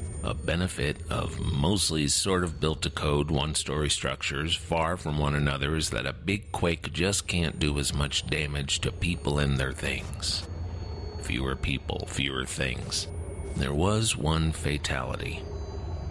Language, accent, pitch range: English, American, 75-90 Hz